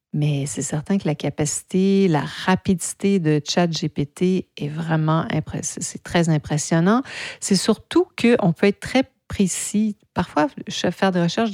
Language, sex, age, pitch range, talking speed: French, female, 50-69, 155-195 Hz, 140 wpm